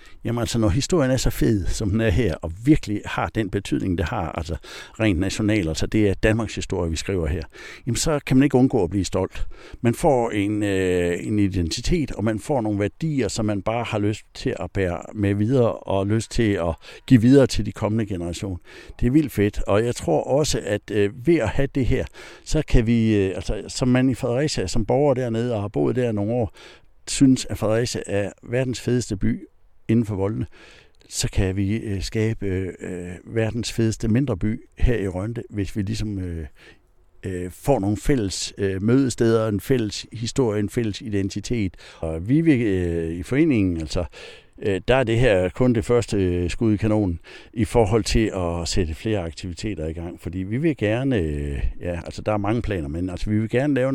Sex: male